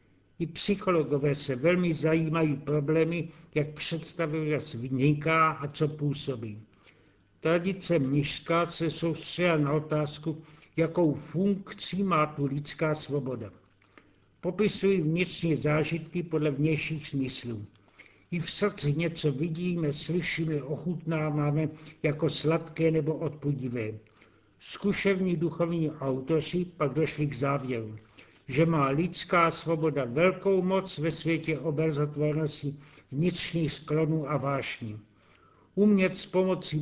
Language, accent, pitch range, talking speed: Czech, native, 145-170 Hz, 105 wpm